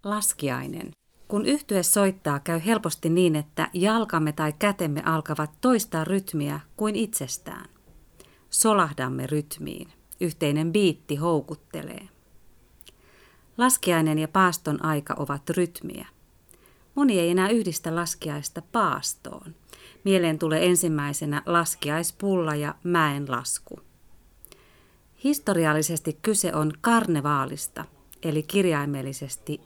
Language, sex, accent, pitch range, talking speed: Finnish, female, native, 150-190 Hz, 90 wpm